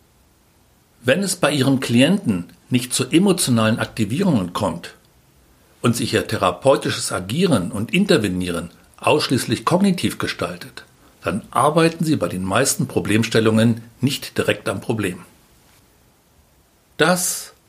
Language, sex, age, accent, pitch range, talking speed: German, male, 60-79, German, 110-155 Hz, 110 wpm